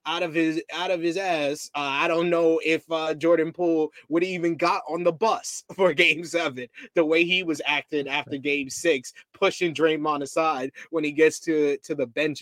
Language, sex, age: English, male, 20-39